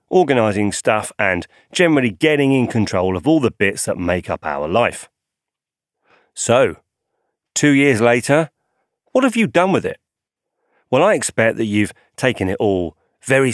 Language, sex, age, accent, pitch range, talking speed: English, male, 30-49, British, 100-145 Hz, 155 wpm